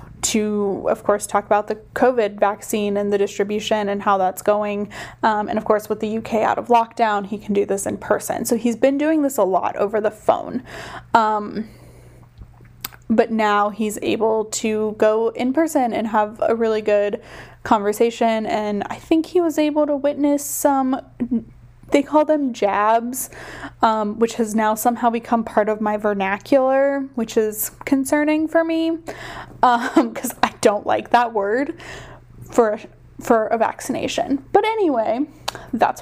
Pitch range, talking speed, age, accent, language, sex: 215-270 Hz, 165 wpm, 10-29, American, English, female